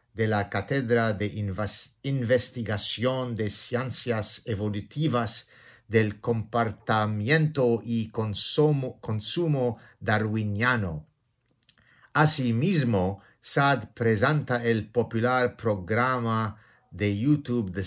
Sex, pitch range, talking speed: male, 110-125 Hz, 80 wpm